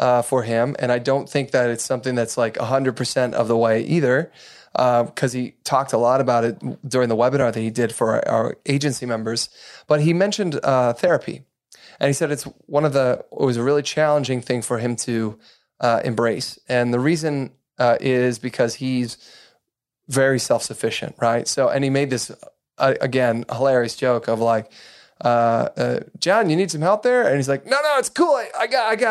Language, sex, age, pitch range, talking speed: English, male, 30-49, 120-145 Hz, 210 wpm